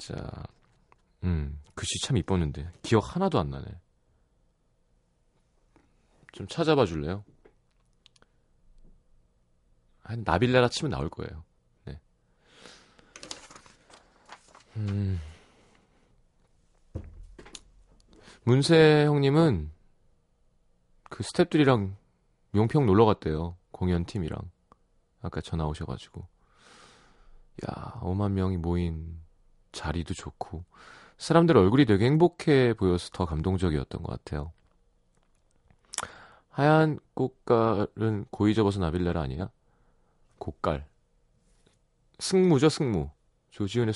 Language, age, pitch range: Korean, 40-59, 70-110 Hz